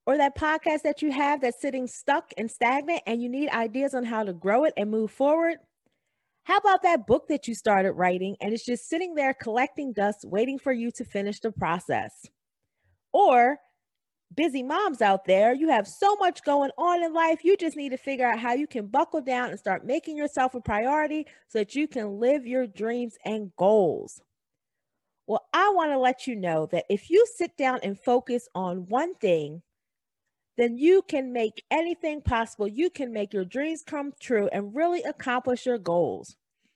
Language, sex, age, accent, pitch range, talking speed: English, female, 40-59, American, 215-310 Hz, 195 wpm